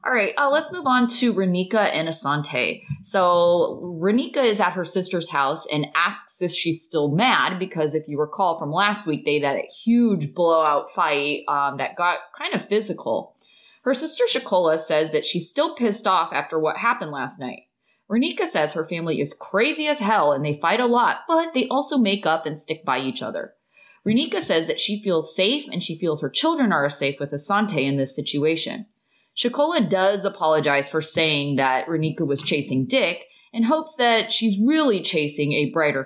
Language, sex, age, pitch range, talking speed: English, female, 20-39, 150-220 Hz, 190 wpm